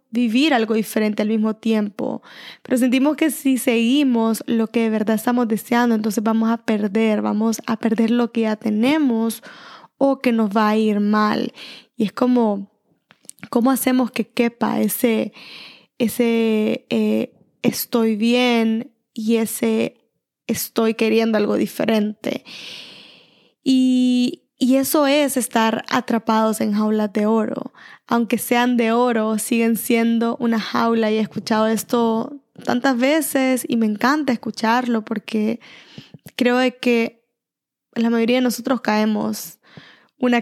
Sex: female